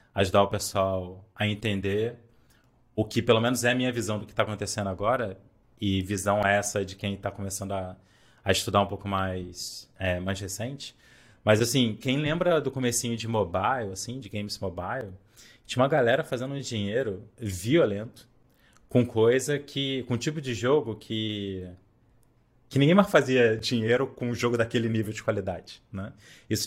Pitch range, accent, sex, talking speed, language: 100-120 Hz, Brazilian, male, 175 wpm, Portuguese